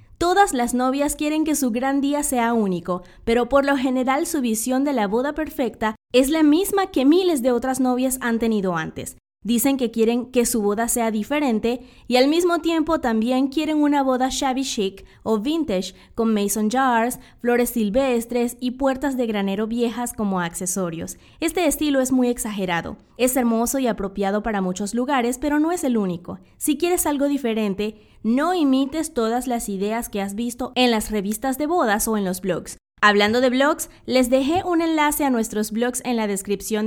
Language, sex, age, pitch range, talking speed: English, female, 20-39, 220-280 Hz, 185 wpm